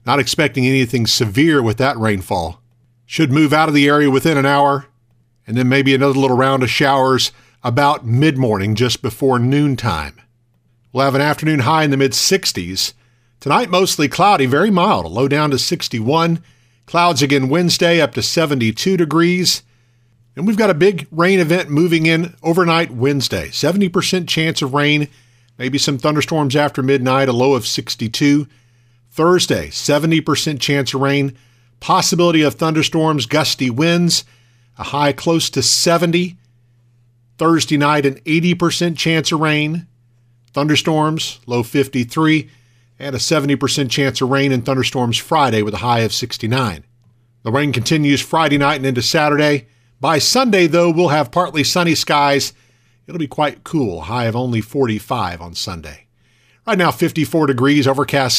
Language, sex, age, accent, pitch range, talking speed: English, male, 50-69, American, 120-160 Hz, 150 wpm